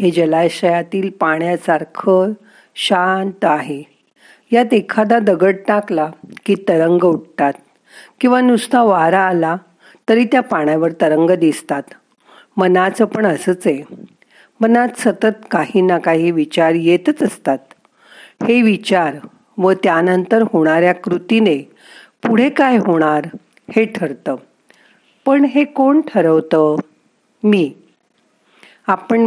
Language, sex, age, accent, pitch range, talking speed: Marathi, female, 50-69, native, 165-225 Hz, 105 wpm